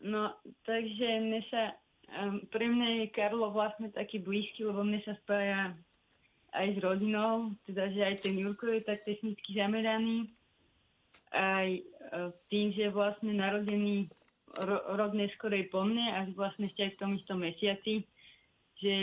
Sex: female